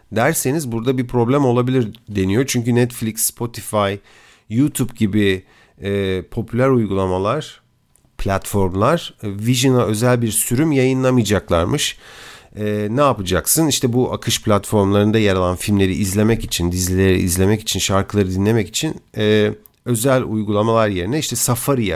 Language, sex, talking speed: Turkish, male, 120 wpm